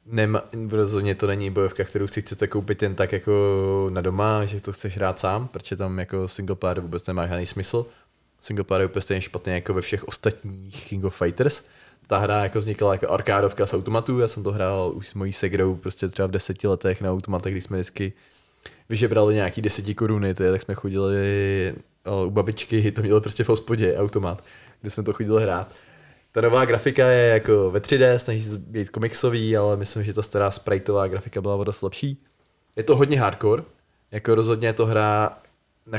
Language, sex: Czech, male